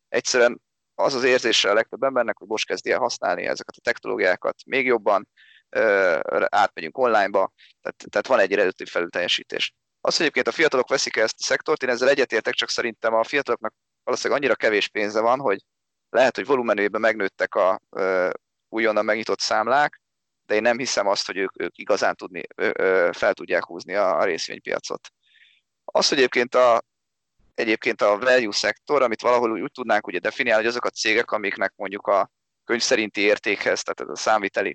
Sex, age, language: male, 30-49, Hungarian